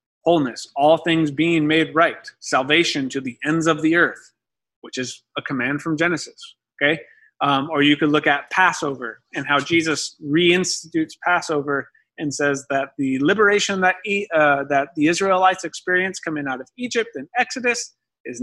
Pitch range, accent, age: 140-170 Hz, American, 30-49